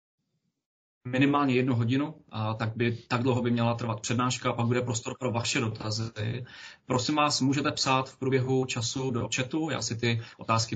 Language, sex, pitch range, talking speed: Czech, male, 115-130 Hz, 175 wpm